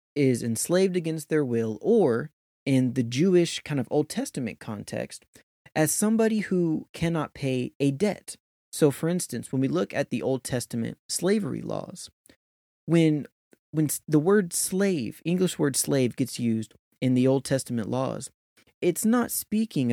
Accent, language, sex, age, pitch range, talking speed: American, English, male, 20-39, 130-170 Hz, 155 wpm